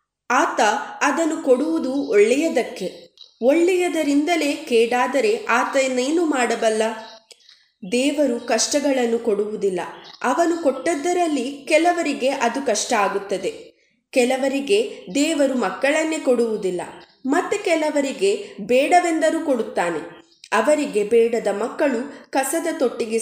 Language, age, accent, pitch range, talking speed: Kannada, 20-39, native, 230-300 Hz, 80 wpm